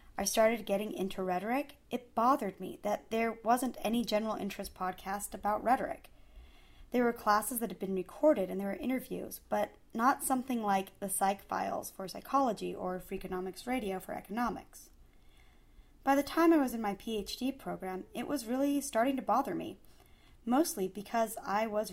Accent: American